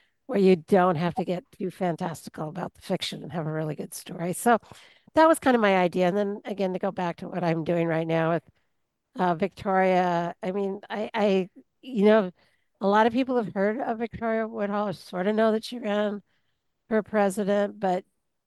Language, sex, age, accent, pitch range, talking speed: English, female, 50-69, American, 170-205 Hz, 200 wpm